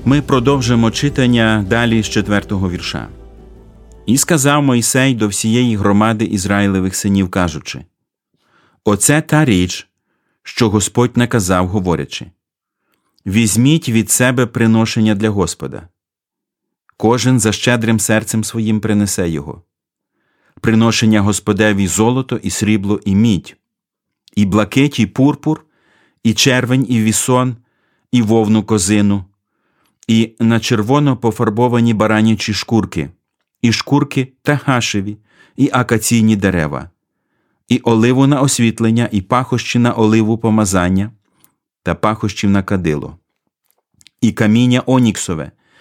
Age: 40-59